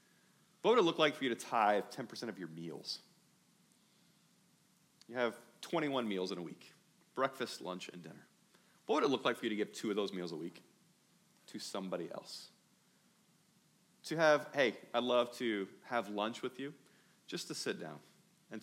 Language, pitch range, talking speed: English, 105-165 Hz, 185 wpm